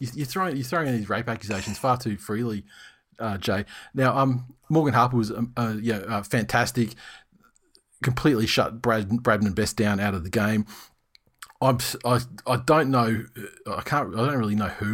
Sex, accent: male, Australian